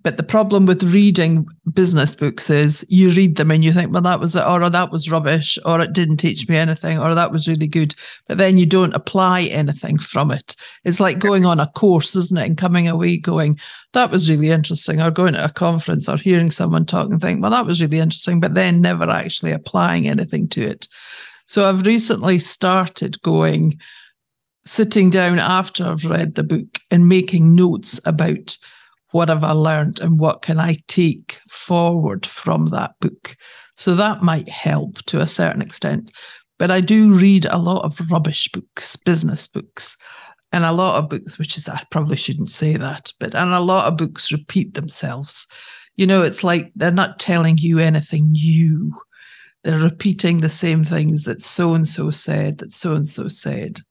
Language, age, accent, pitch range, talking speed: English, 50-69, British, 160-185 Hz, 190 wpm